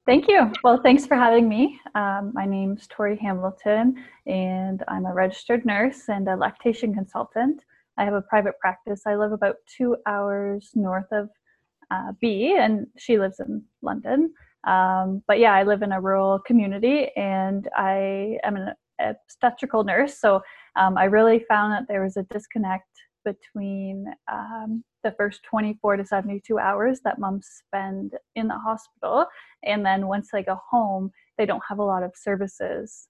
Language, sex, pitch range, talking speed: English, female, 195-230 Hz, 170 wpm